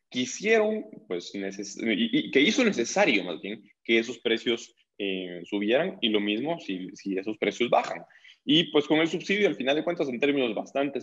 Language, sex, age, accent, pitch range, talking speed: Spanish, male, 20-39, Mexican, 100-155 Hz, 185 wpm